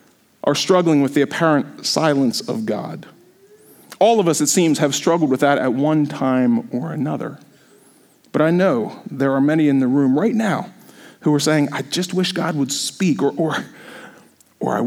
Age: 40-59